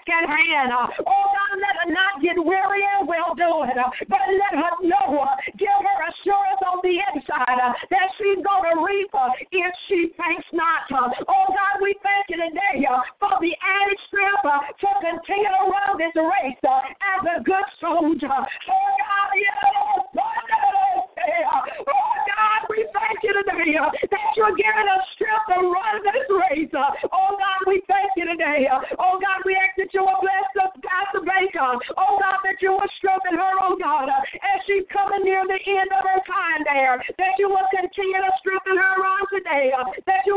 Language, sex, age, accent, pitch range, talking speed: English, female, 50-69, American, 340-395 Hz, 185 wpm